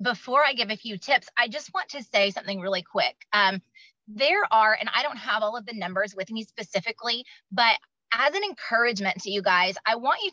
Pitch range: 200-255 Hz